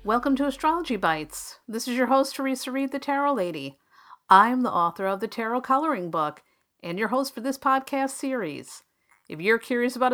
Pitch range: 185-265 Hz